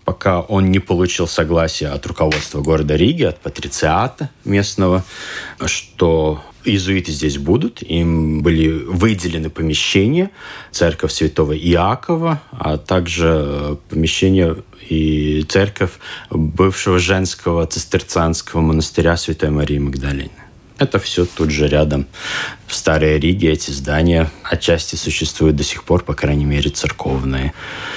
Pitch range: 75-95 Hz